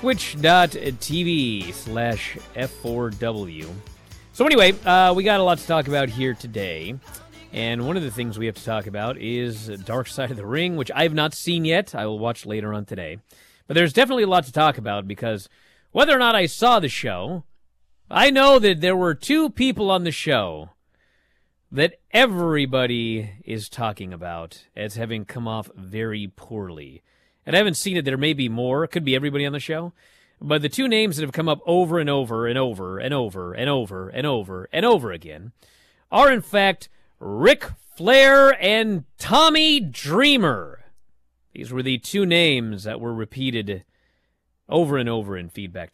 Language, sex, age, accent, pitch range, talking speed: English, male, 30-49, American, 100-165 Hz, 180 wpm